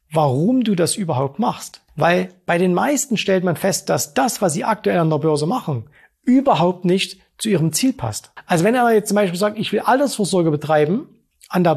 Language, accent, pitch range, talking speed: German, German, 155-205 Hz, 205 wpm